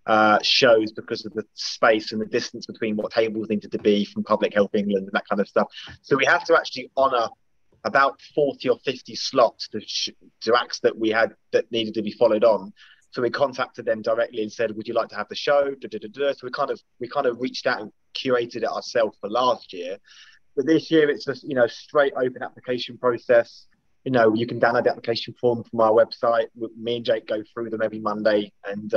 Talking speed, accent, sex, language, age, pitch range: 225 wpm, British, male, English, 20-39, 110-130 Hz